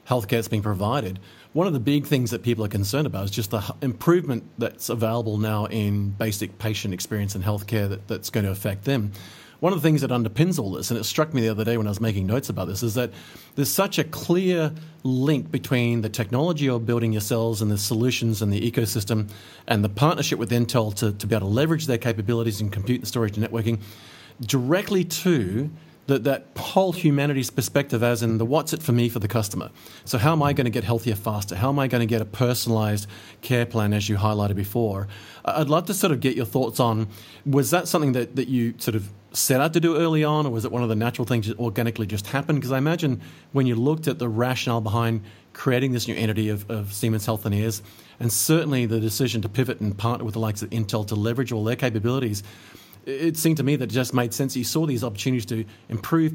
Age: 40-59